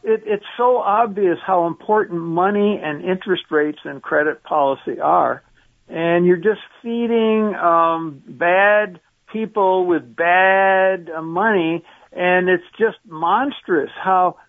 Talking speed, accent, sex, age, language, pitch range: 120 wpm, American, male, 60-79, English, 180-235 Hz